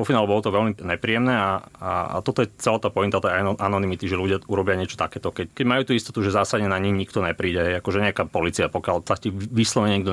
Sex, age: male, 30-49